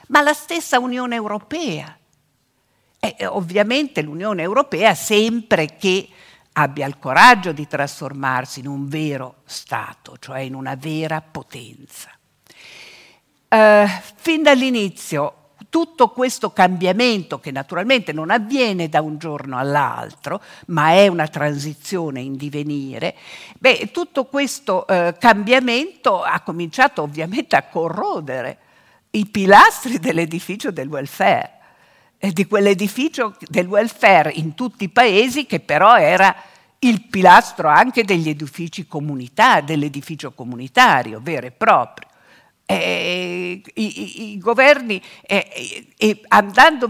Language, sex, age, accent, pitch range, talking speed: Italian, female, 50-69, native, 150-230 Hz, 110 wpm